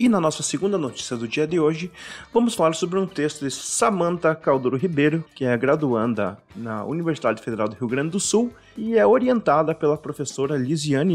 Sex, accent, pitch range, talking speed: male, Brazilian, 130-190 Hz, 190 wpm